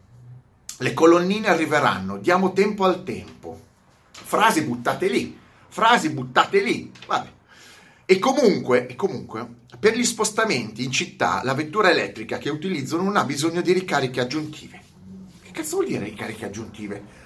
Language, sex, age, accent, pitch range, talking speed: Italian, male, 30-49, native, 120-175 Hz, 140 wpm